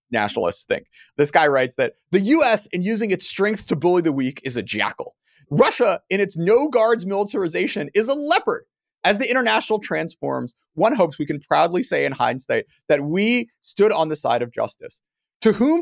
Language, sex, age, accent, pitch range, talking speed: English, male, 30-49, American, 155-240 Hz, 185 wpm